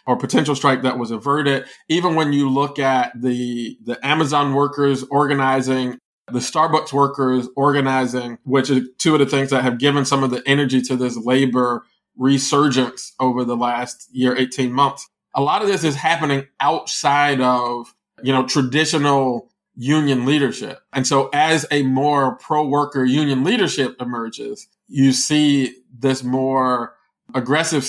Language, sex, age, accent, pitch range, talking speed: English, male, 20-39, American, 125-145 Hz, 155 wpm